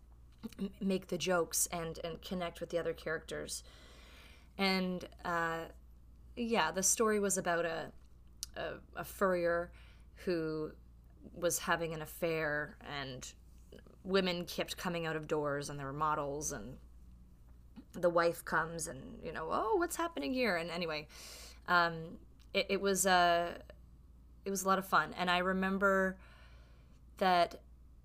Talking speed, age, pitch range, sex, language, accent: 140 wpm, 20-39, 125-190 Hz, female, English, American